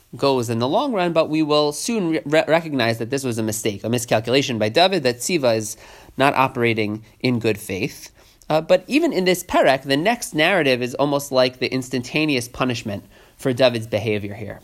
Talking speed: 195 wpm